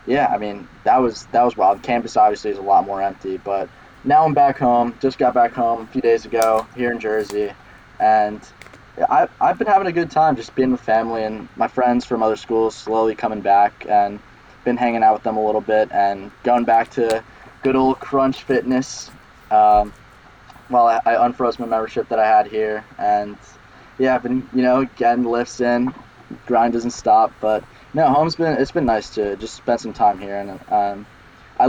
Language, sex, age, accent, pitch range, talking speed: English, male, 10-29, American, 105-130 Hz, 205 wpm